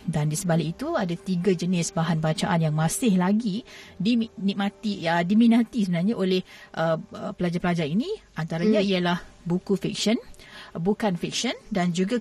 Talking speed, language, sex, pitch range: 135 wpm, Malay, female, 170-215 Hz